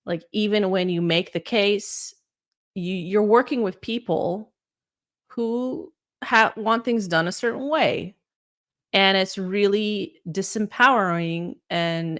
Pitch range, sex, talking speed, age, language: 160-210 Hz, female, 125 wpm, 30-49, English